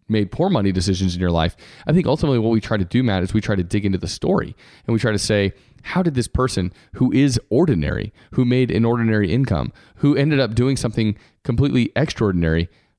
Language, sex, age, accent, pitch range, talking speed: English, male, 30-49, American, 95-120 Hz, 220 wpm